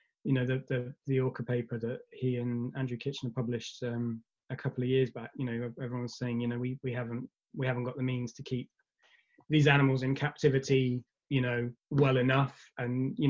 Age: 20-39